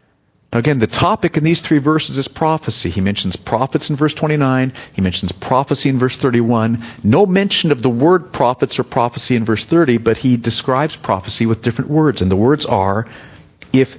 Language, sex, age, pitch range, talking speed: English, male, 50-69, 110-155 Hz, 195 wpm